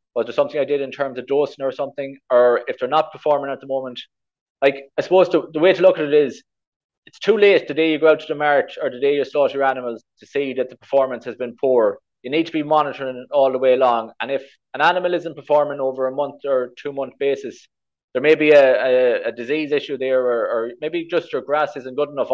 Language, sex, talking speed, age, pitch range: English, male, 260 wpm, 20-39, 130-160 Hz